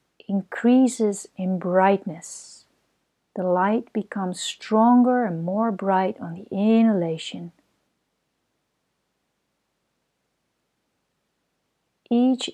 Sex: female